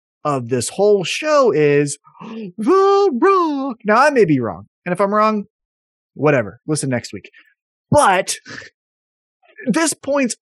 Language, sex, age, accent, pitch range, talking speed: English, male, 30-49, American, 125-195 Hz, 130 wpm